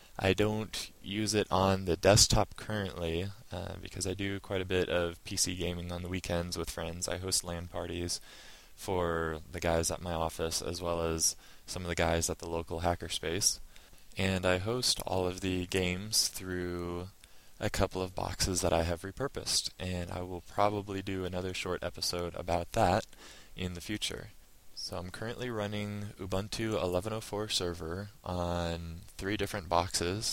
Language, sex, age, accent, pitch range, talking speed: English, male, 20-39, American, 85-95 Hz, 165 wpm